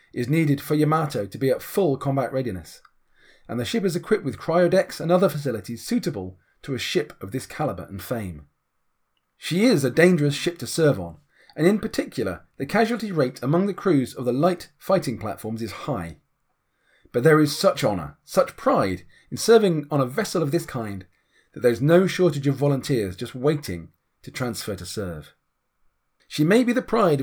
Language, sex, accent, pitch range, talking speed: English, male, British, 120-175 Hz, 185 wpm